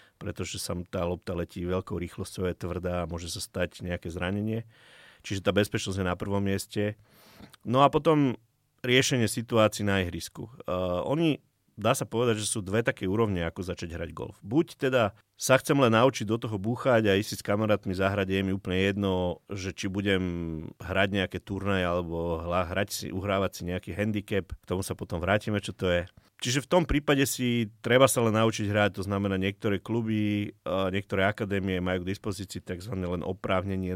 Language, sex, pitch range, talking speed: Slovak, male, 90-110 Hz, 185 wpm